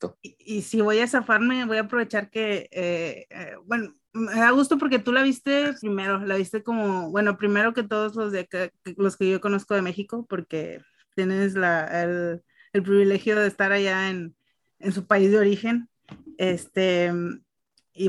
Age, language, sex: 30-49, Spanish, female